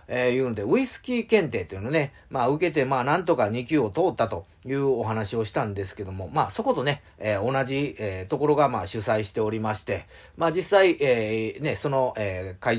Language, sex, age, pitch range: Japanese, male, 40-59, 105-155 Hz